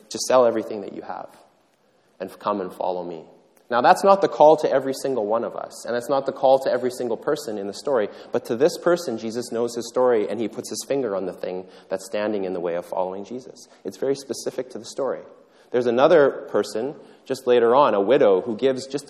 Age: 30-49